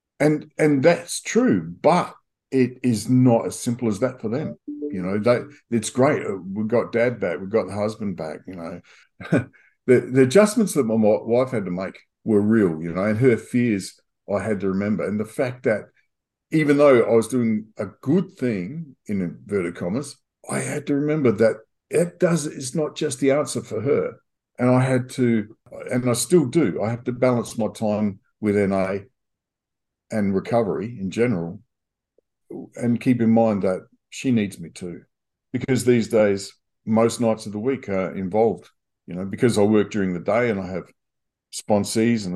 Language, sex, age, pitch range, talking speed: English, male, 50-69, 100-130 Hz, 185 wpm